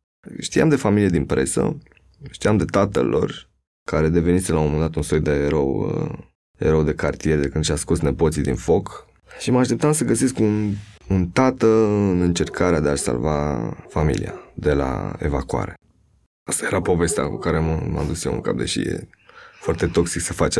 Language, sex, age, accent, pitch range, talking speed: Romanian, male, 20-39, native, 80-100 Hz, 180 wpm